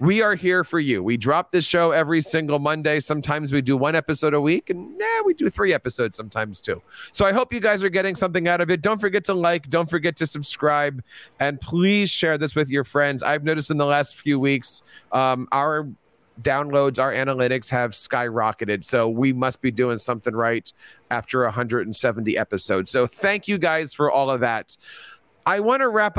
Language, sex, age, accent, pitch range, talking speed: English, male, 40-59, American, 140-190 Hz, 205 wpm